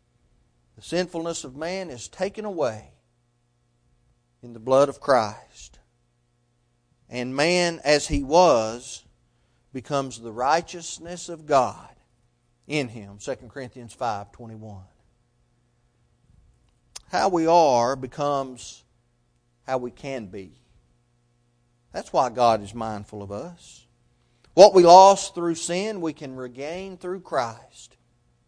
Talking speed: 110 wpm